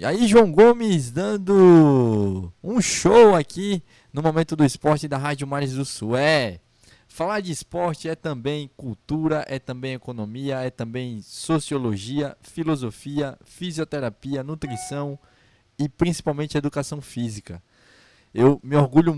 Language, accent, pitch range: Portuguese, Brazilian, 120-150 Hz